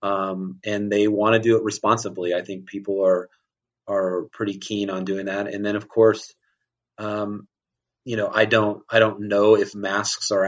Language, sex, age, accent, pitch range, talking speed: English, male, 30-49, American, 95-105 Hz, 190 wpm